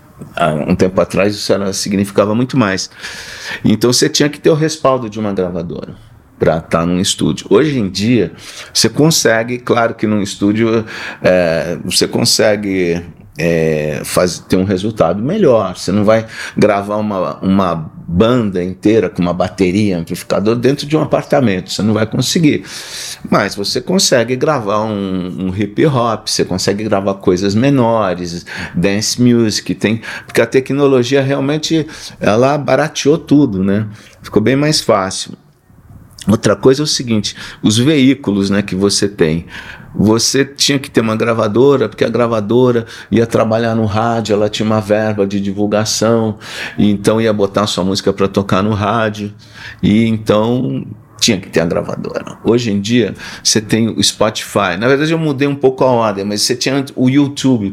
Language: Portuguese